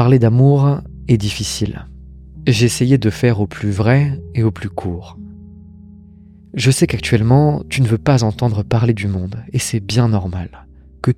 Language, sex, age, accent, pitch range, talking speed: French, male, 30-49, French, 100-130 Hz, 165 wpm